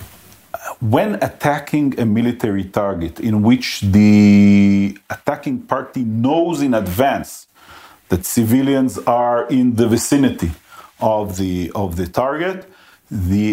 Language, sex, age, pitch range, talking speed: English, male, 40-59, 95-125 Hz, 110 wpm